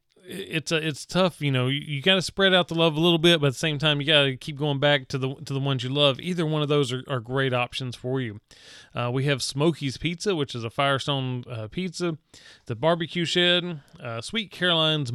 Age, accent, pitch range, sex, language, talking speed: 30-49, American, 130-165 Hz, male, English, 240 wpm